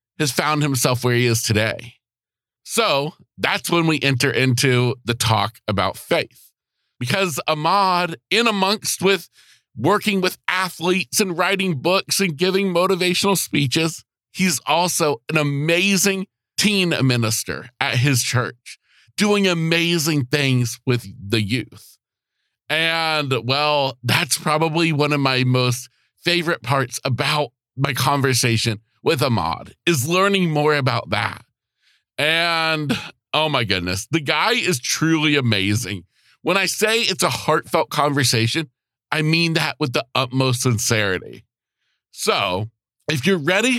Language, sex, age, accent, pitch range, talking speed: English, male, 50-69, American, 125-175 Hz, 130 wpm